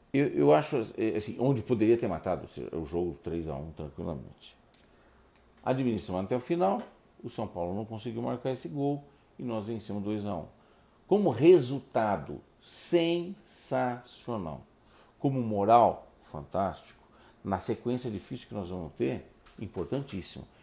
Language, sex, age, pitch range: Portuguese, male, 60-79, 85-120 Hz